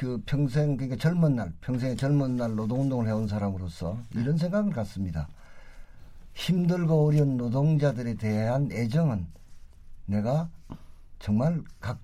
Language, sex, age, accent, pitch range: Korean, male, 50-69, native, 100-165 Hz